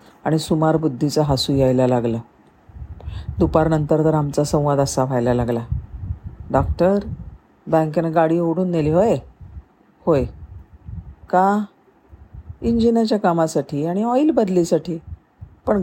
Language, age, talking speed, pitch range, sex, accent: Marathi, 40-59, 100 wpm, 115-175 Hz, female, native